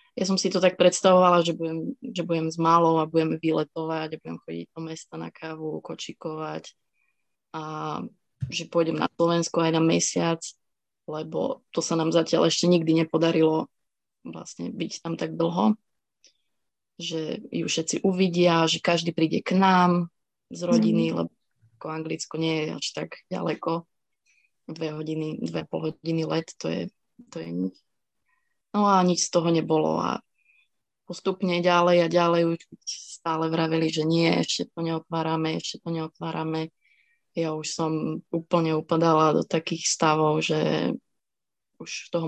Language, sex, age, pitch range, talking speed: Slovak, female, 20-39, 160-175 Hz, 150 wpm